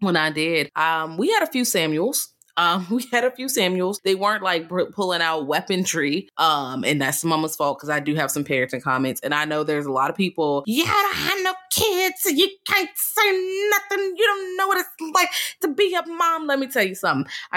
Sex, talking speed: female, 225 wpm